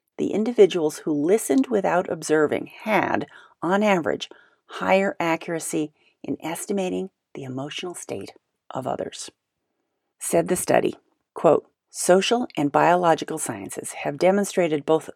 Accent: American